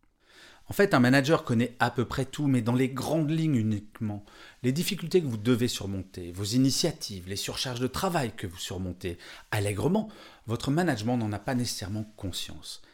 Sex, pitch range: male, 105-165 Hz